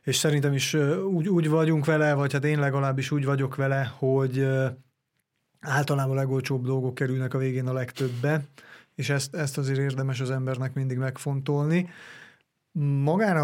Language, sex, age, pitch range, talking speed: Hungarian, male, 30-49, 135-160 Hz, 150 wpm